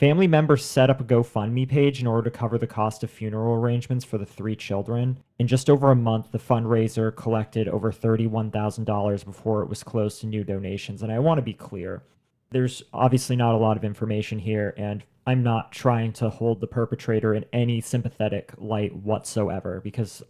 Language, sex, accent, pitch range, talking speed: English, male, American, 105-125 Hz, 190 wpm